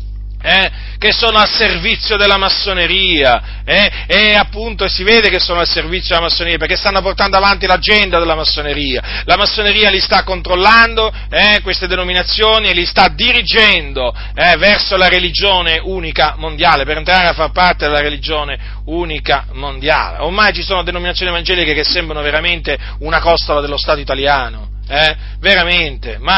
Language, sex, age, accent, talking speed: Italian, male, 40-59, native, 155 wpm